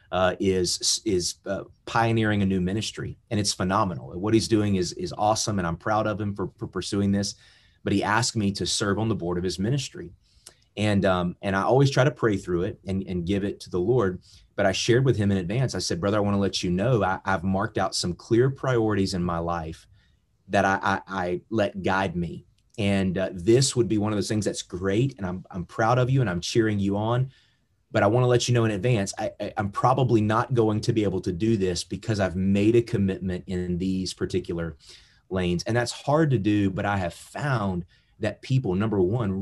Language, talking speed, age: English, 230 wpm, 30-49